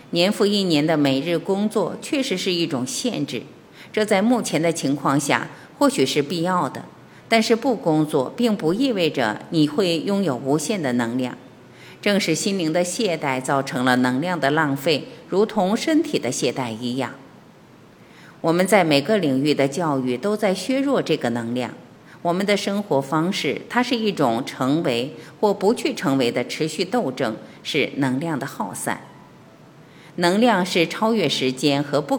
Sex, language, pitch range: female, Chinese, 140-210 Hz